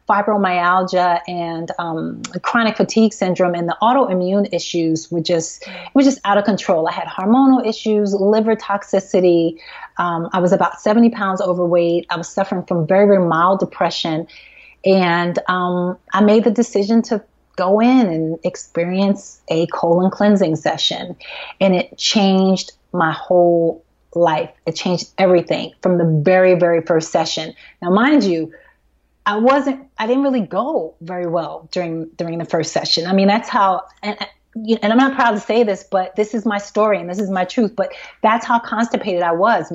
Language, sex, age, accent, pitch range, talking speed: English, female, 30-49, American, 175-210 Hz, 170 wpm